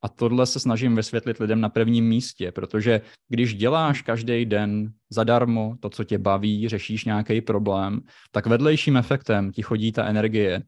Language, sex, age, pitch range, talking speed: Czech, male, 20-39, 105-125 Hz, 165 wpm